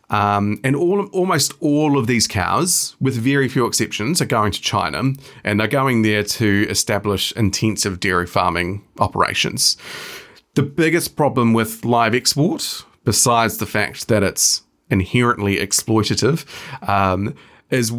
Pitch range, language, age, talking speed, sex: 100-130 Hz, English, 30-49, 140 wpm, male